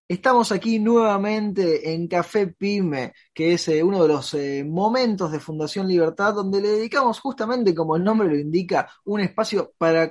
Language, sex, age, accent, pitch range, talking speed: Spanish, male, 20-39, Argentinian, 145-195 Hz, 170 wpm